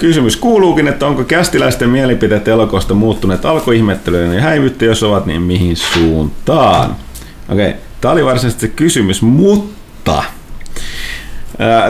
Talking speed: 130 wpm